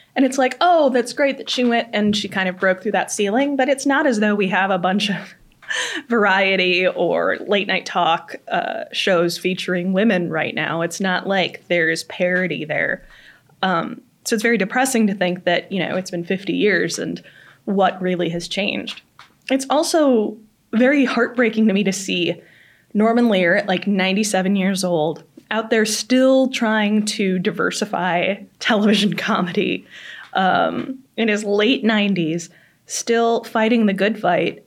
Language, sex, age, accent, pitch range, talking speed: English, female, 20-39, American, 185-230 Hz, 165 wpm